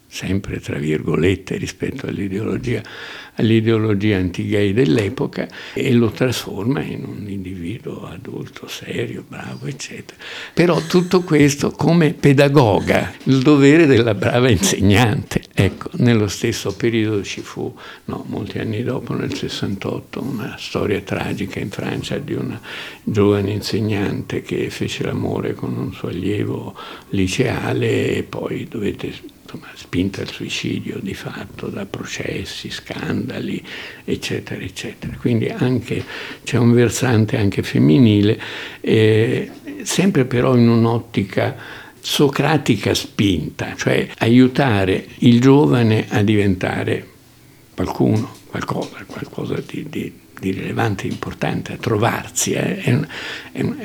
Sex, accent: male, native